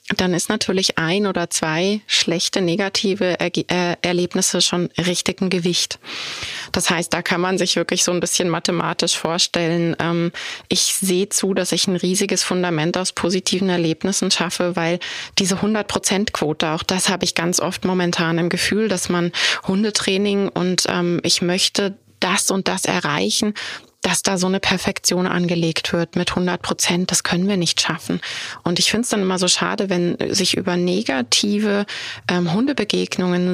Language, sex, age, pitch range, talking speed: German, female, 20-39, 175-200 Hz, 165 wpm